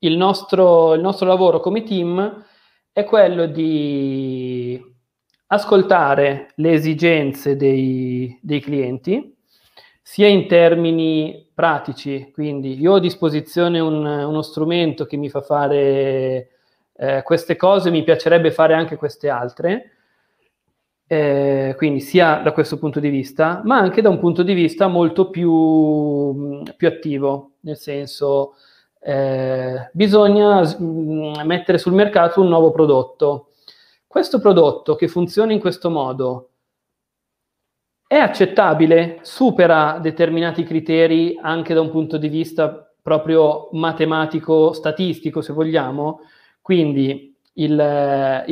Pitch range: 140-170 Hz